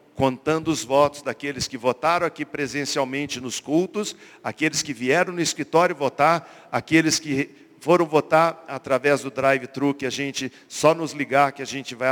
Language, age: Portuguese, 50-69